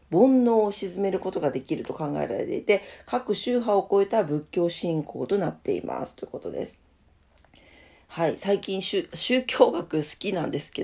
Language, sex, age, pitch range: Japanese, female, 40-59, 145-230 Hz